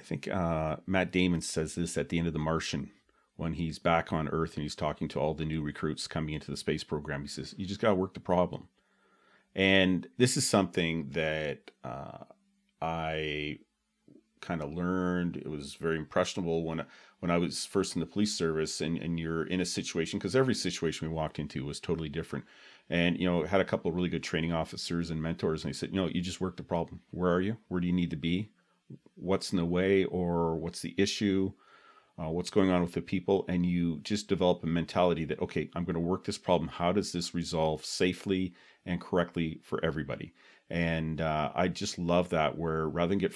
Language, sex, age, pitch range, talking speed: English, male, 40-59, 80-90 Hz, 220 wpm